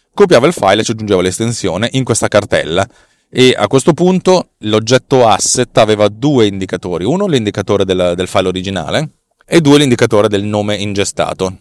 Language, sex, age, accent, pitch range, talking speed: Italian, male, 30-49, native, 100-130 Hz, 160 wpm